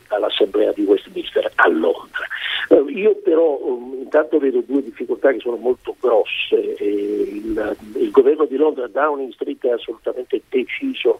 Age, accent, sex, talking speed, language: 50-69, native, male, 150 wpm, Italian